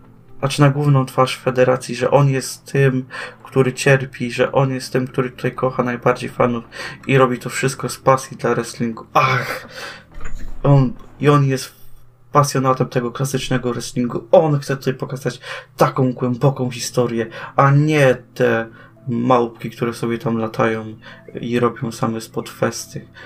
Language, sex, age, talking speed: Polish, male, 20-39, 145 wpm